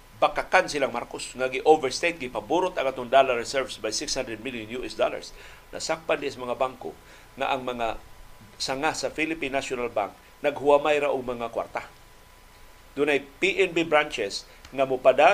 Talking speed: 150 wpm